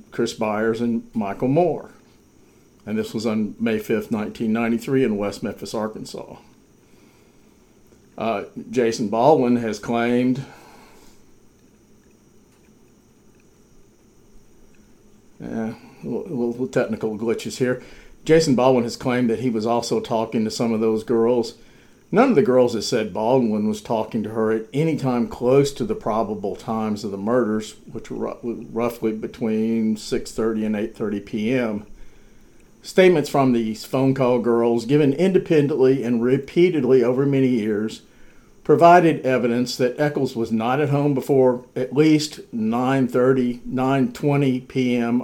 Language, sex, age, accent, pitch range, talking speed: English, male, 50-69, American, 115-135 Hz, 130 wpm